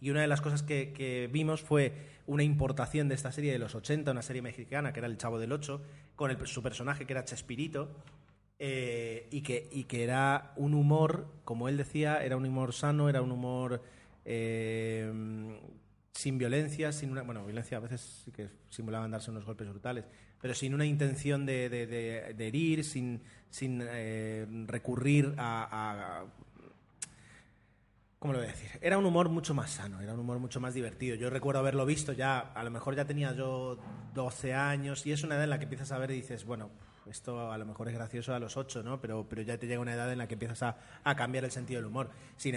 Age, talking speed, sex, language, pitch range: 30-49, 220 wpm, male, Spanish, 115-140 Hz